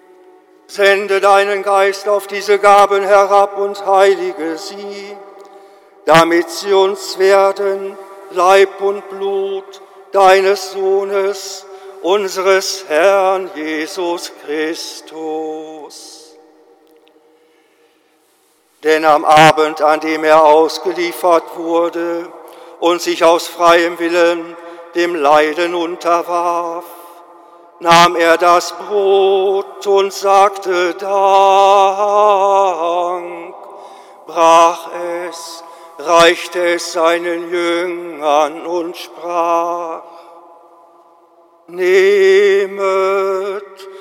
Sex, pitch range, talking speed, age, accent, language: male, 170-195 Hz, 75 wpm, 50-69, German, German